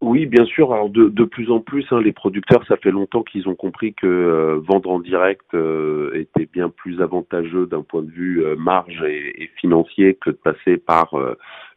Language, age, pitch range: French, 30-49, 80-105 Hz